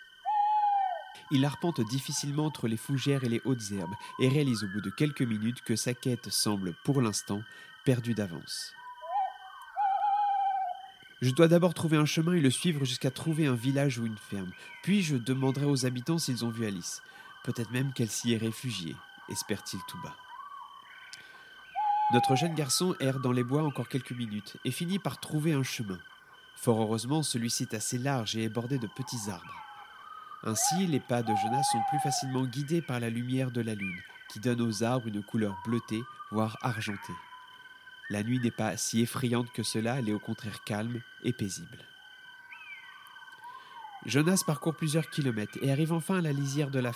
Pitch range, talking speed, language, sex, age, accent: 120-180 Hz, 175 wpm, French, male, 30-49, French